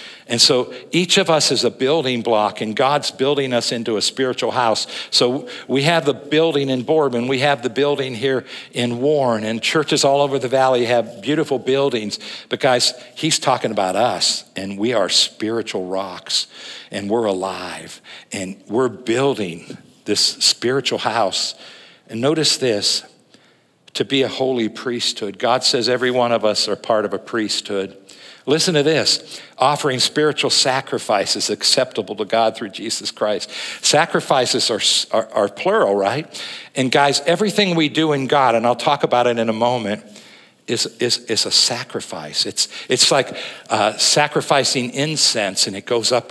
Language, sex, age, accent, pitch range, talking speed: English, male, 60-79, American, 115-145 Hz, 165 wpm